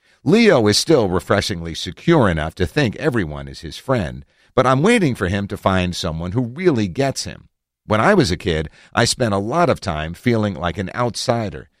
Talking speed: 200 wpm